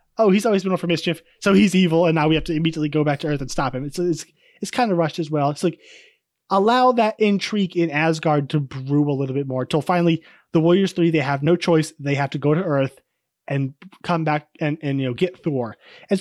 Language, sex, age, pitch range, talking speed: English, male, 20-39, 150-195 Hz, 255 wpm